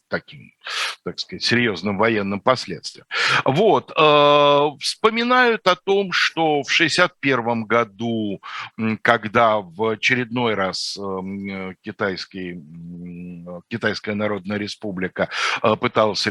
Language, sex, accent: Russian, male, native